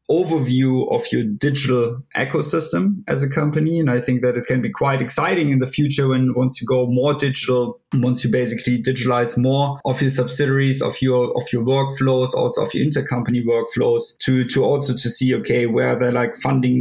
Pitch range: 120-135 Hz